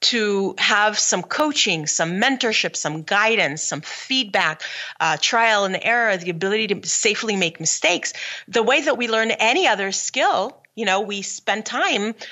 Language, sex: English, female